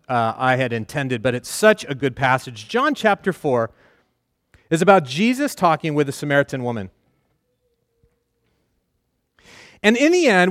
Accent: American